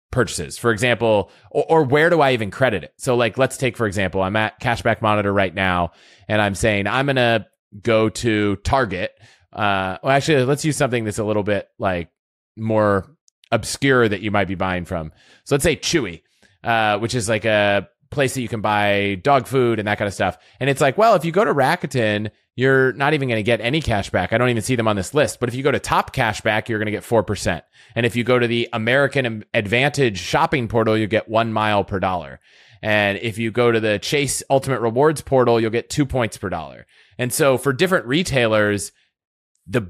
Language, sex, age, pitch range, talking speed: English, male, 30-49, 105-130 Hz, 225 wpm